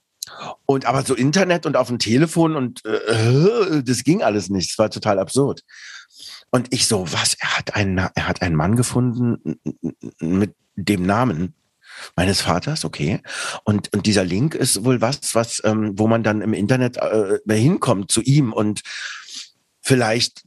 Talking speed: 165 wpm